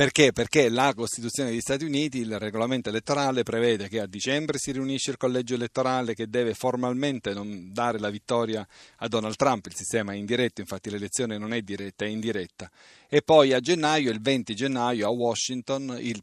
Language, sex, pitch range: Italian, male, 105-135 Hz